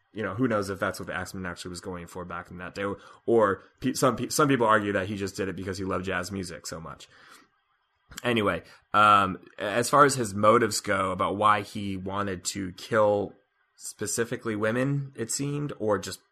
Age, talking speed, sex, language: 20-39, 200 wpm, male, English